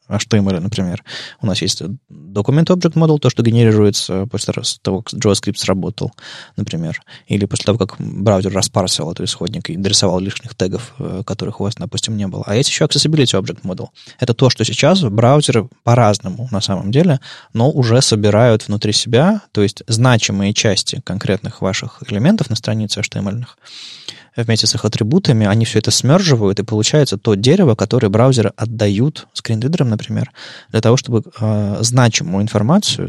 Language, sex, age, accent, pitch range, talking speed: Russian, male, 20-39, native, 105-140 Hz, 160 wpm